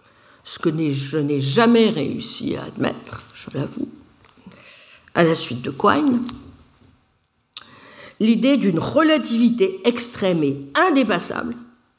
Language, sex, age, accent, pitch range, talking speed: French, female, 60-79, French, 145-240 Hz, 105 wpm